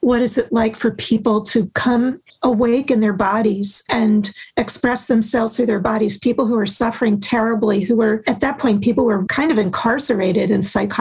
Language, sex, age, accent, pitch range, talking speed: English, female, 40-59, American, 215-245 Hz, 190 wpm